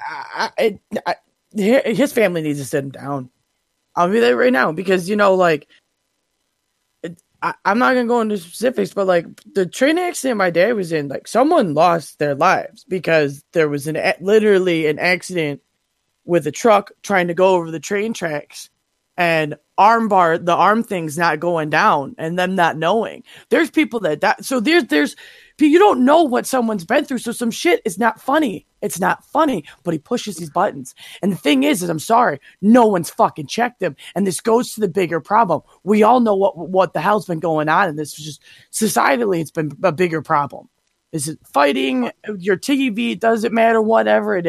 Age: 20-39